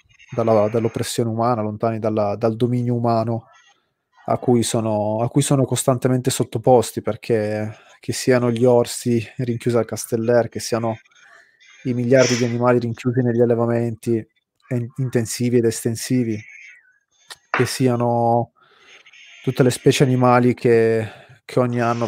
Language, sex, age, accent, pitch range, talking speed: Italian, male, 20-39, native, 115-125 Hz, 125 wpm